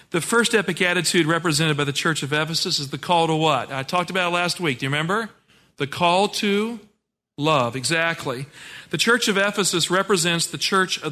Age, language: 40-59, English